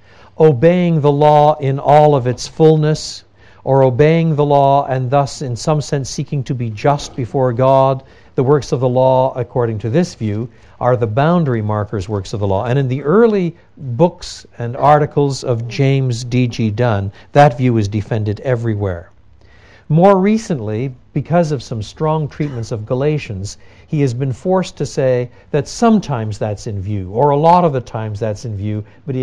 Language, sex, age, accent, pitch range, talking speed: Danish, male, 60-79, American, 110-150 Hz, 180 wpm